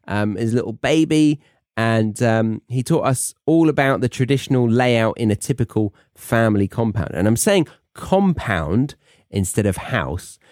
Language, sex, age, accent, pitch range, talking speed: English, male, 30-49, British, 100-130 Hz, 150 wpm